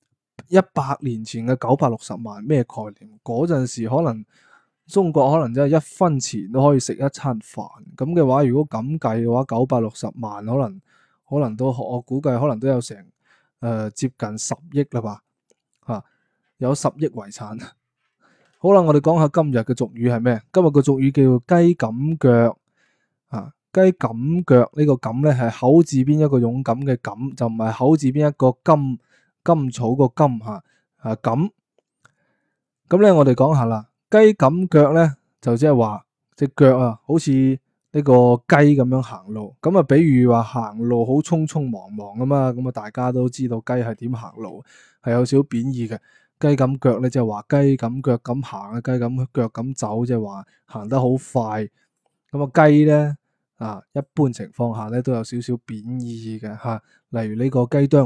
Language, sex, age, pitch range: Chinese, male, 20-39, 120-145 Hz